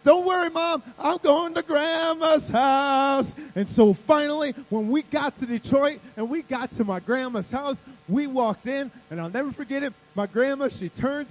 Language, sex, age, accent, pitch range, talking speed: English, male, 30-49, American, 205-275 Hz, 185 wpm